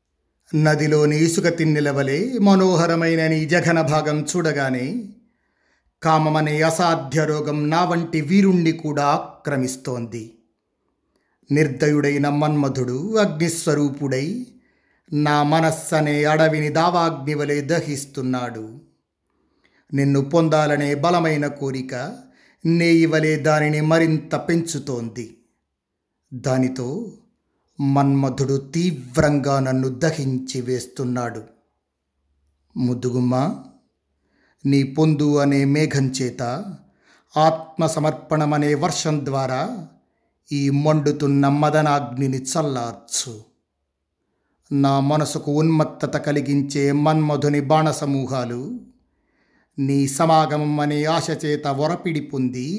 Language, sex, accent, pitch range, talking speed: Telugu, male, native, 135-160 Hz, 70 wpm